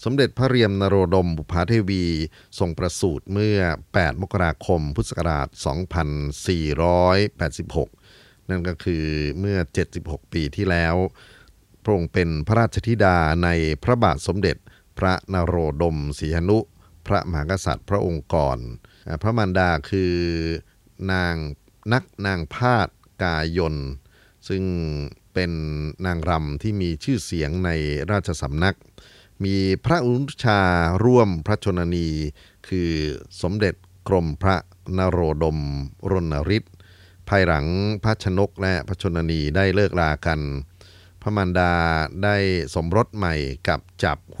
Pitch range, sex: 80-100 Hz, male